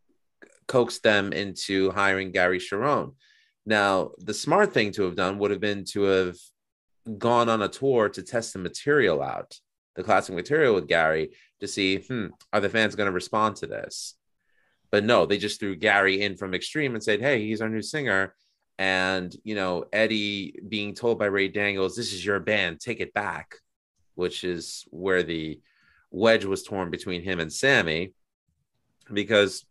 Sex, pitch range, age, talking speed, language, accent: male, 95-110 Hz, 30-49, 175 wpm, English, American